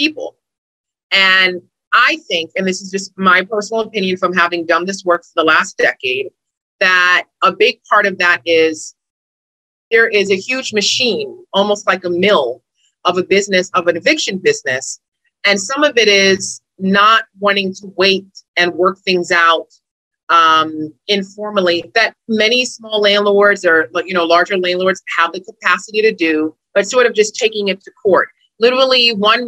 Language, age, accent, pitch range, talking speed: English, 30-49, American, 175-215 Hz, 165 wpm